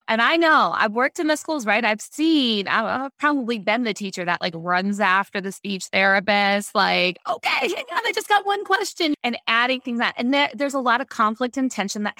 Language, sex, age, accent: English, female, 20-39, American